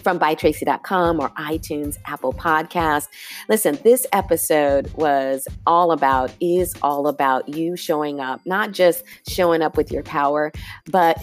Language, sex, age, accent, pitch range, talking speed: English, female, 40-59, American, 145-175 Hz, 140 wpm